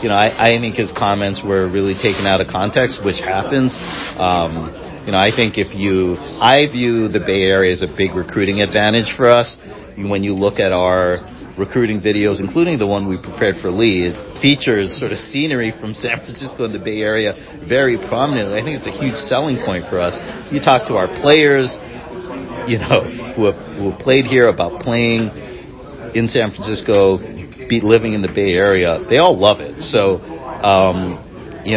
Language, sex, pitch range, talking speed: English, male, 95-115 Hz, 190 wpm